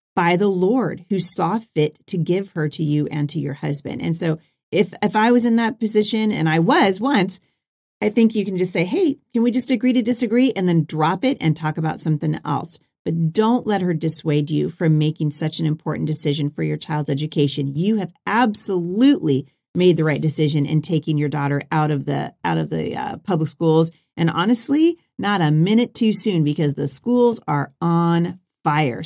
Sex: female